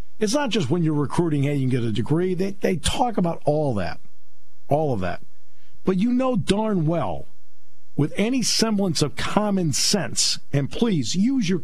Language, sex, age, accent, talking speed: English, male, 50-69, American, 185 wpm